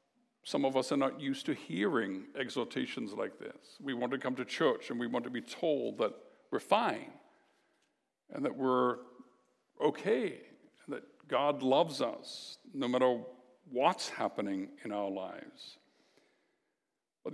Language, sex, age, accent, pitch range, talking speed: English, male, 60-79, American, 120-175 Hz, 145 wpm